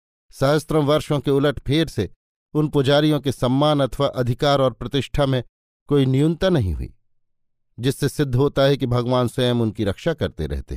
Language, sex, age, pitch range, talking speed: Hindi, male, 50-69, 110-140 Hz, 165 wpm